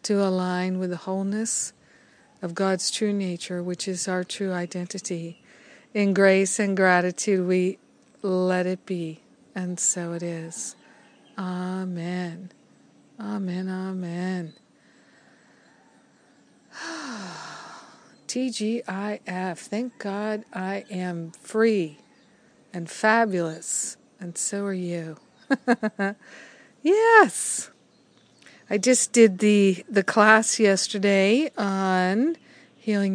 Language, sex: English, female